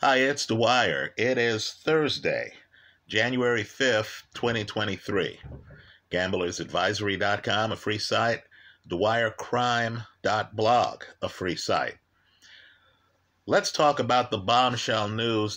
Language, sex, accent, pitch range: English, male, American, 95-130 Hz